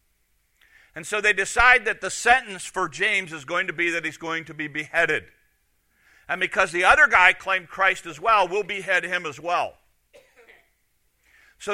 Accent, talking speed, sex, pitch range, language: American, 175 wpm, male, 130-190 Hz, English